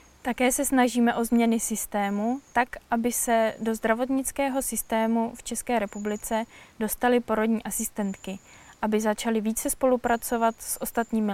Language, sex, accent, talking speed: Czech, female, native, 125 wpm